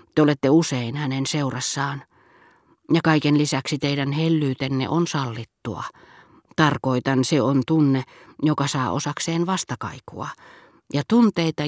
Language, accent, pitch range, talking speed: Finnish, native, 125-160 Hz, 110 wpm